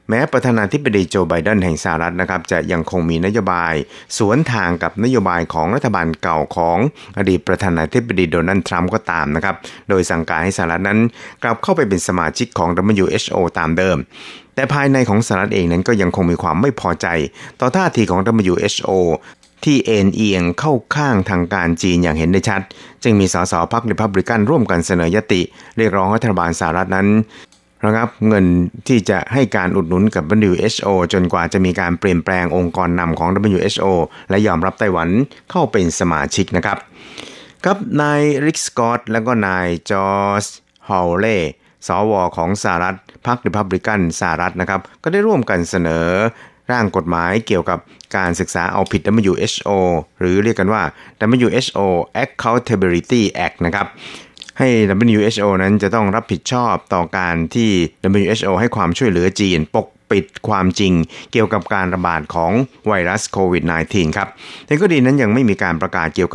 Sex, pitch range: male, 85-110 Hz